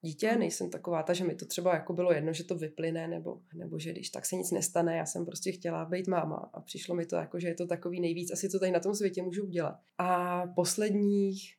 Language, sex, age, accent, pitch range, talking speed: Czech, female, 20-39, native, 175-195 Hz, 250 wpm